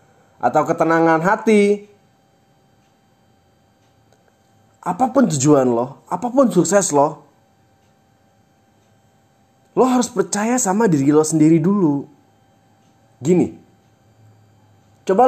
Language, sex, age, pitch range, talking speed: Indonesian, male, 30-49, 110-180 Hz, 75 wpm